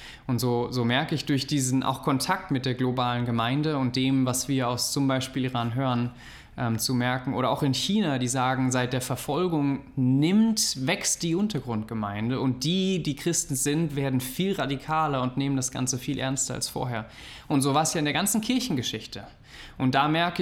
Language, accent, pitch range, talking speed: German, German, 125-145 Hz, 195 wpm